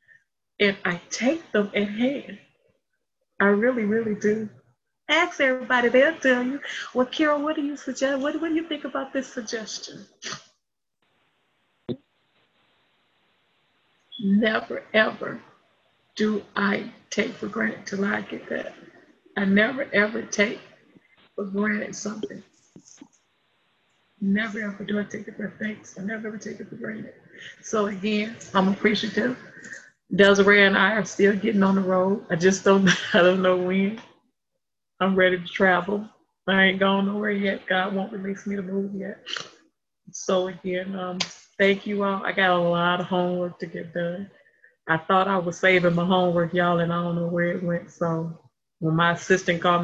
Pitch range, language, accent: 180-215 Hz, English, American